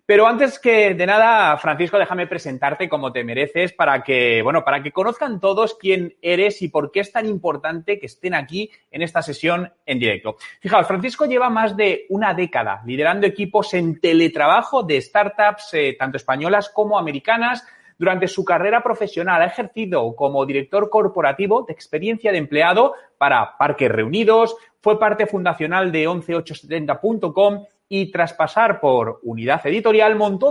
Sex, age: male, 30-49